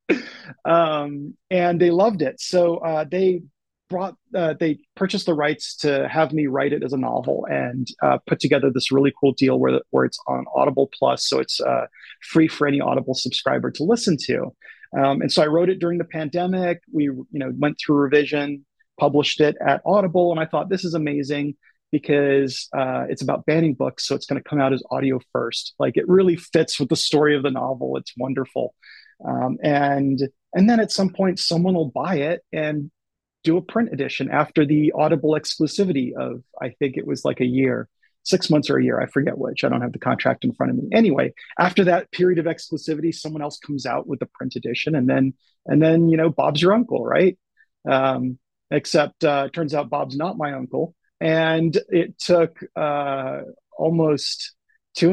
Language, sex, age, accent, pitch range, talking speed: English, male, 30-49, American, 140-175 Hz, 200 wpm